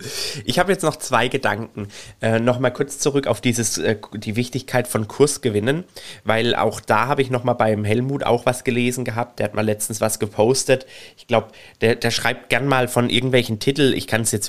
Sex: male